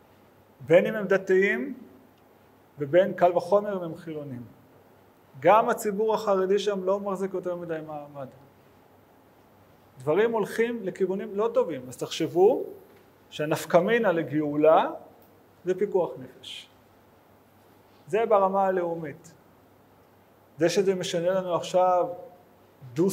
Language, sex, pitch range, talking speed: Hebrew, male, 150-195 Hz, 105 wpm